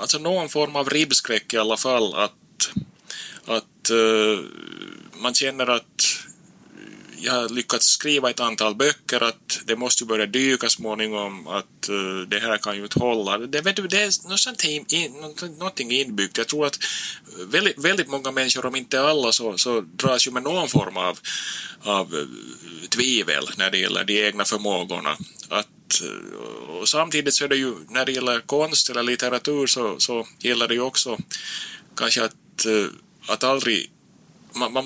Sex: male